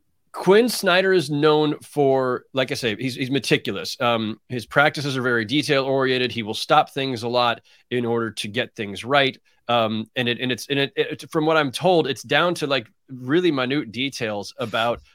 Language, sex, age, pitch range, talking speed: English, male, 30-49, 115-145 Hz, 200 wpm